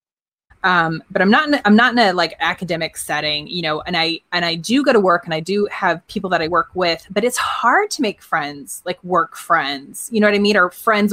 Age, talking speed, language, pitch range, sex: 20-39, 255 wpm, English, 170-210 Hz, female